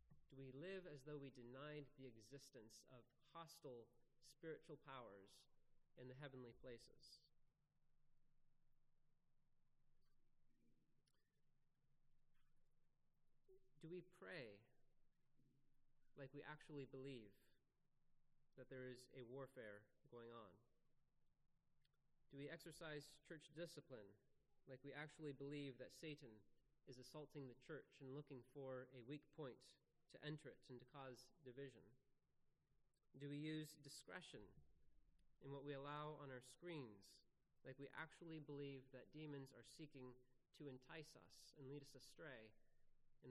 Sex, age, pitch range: male, 30-49, 130-150 Hz